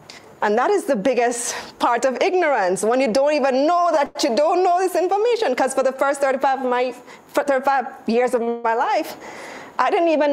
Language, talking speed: English, 200 wpm